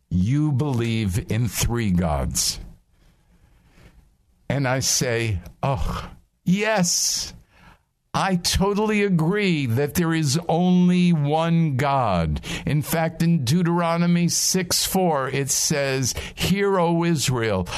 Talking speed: 100 wpm